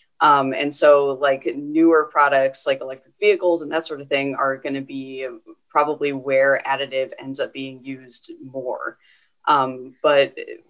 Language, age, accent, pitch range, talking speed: English, 30-49, American, 135-165 Hz, 150 wpm